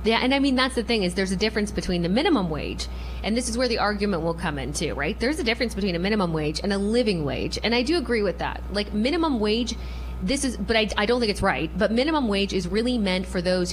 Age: 20-39